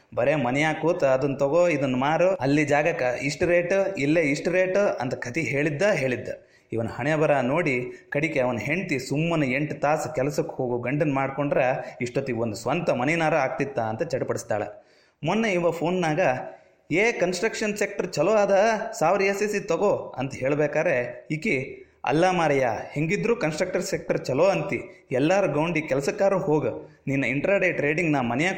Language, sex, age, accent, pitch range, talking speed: Kannada, male, 30-49, native, 135-175 Hz, 145 wpm